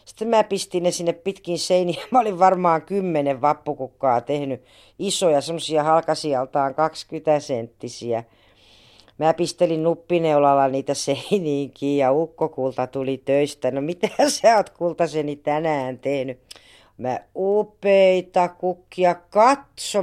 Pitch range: 140-195 Hz